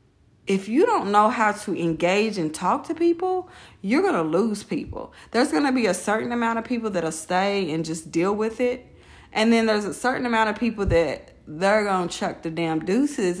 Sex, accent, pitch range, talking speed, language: female, American, 170-250 Hz, 220 wpm, English